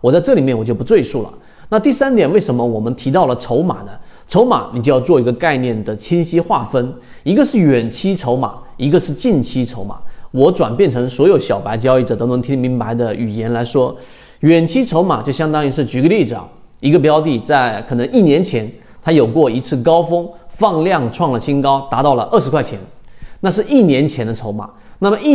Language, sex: Chinese, male